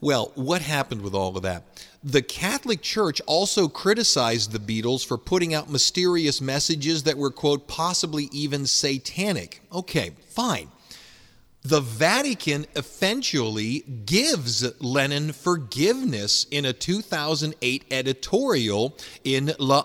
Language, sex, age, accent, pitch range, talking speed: English, male, 40-59, American, 125-160 Hz, 120 wpm